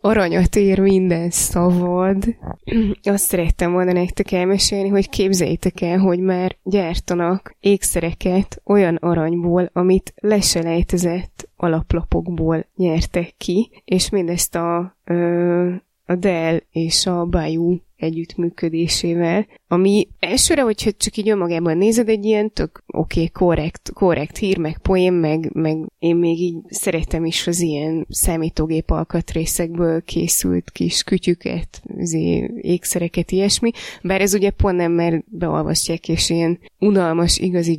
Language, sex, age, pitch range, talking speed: Hungarian, female, 20-39, 170-195 Hz, 120 wpm